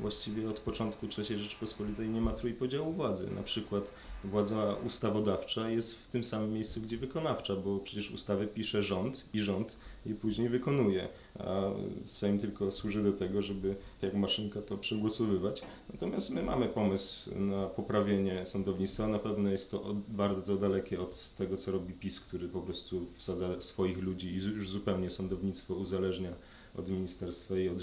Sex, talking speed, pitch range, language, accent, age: male, 160 wpm, 95-105 Hz, Polish, native, 30-49